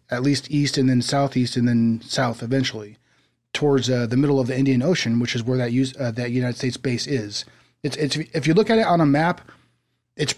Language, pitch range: English, 125-150 Hz